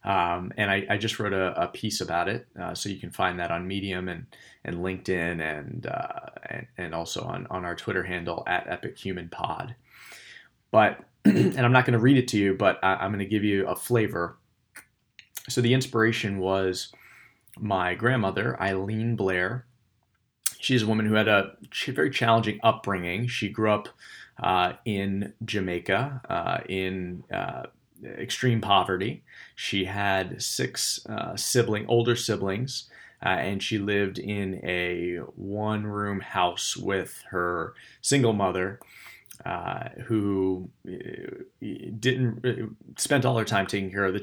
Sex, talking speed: male, 155 wpm